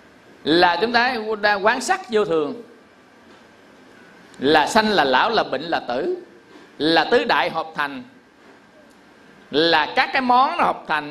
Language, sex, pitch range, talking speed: Vietnamese, male, 155-220 Hz, 145 wpm